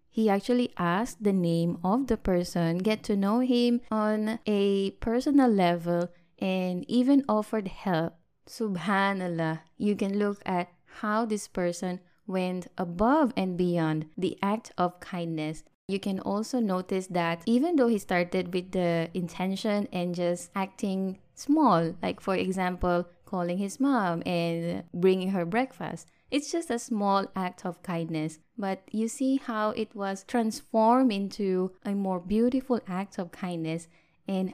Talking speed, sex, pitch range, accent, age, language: 145 wpm, female, 170-215 Hz, Filipino, 20-39, English